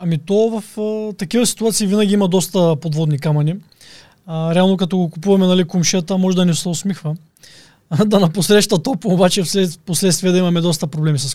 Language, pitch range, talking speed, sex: Bulgarian, 165-205 Hz, 185 wpm, male